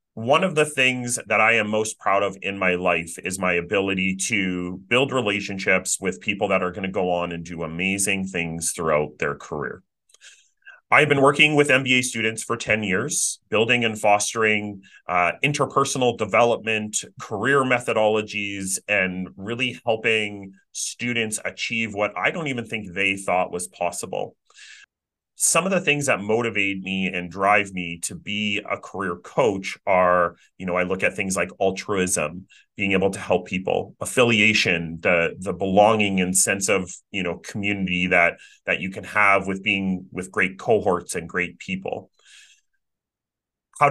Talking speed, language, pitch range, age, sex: 160 wpm, English, 95-125 Hz, 30-49, male